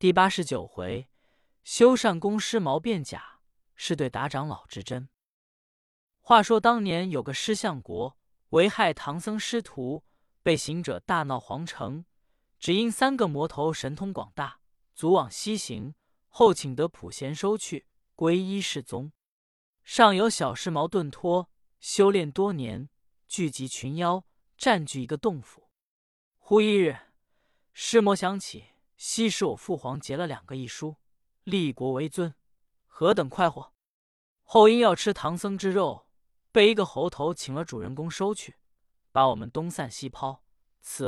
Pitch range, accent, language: 135-200 Hz, native, Chinese